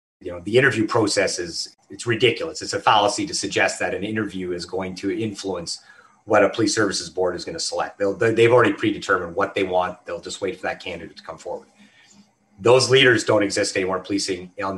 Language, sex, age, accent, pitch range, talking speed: English, male, 30-49, American, 100-120 Hz, 205 wpm